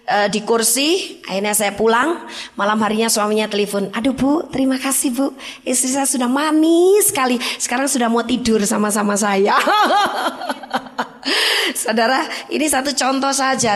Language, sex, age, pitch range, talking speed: Indonesian, female, 20-39, 240-345 Hz, 130 wpm